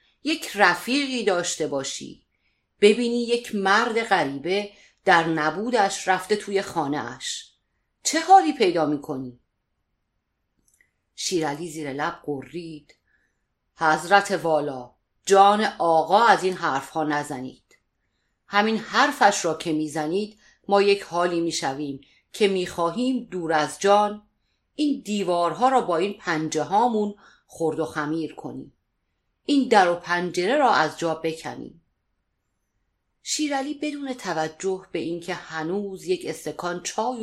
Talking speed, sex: 115 wpm, female